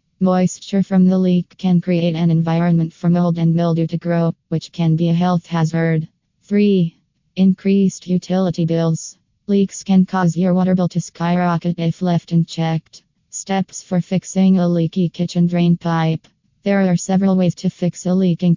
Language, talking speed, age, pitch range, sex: English, 165 wpm, 20-39, 165-180 Hz, female